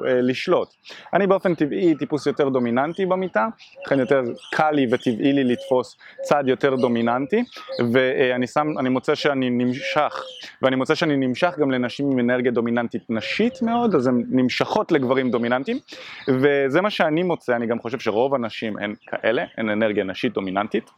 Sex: male